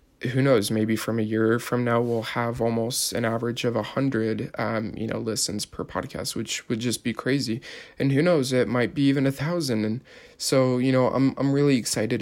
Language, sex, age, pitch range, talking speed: English, male, 20-39, 110-125 Hz, 215 wpm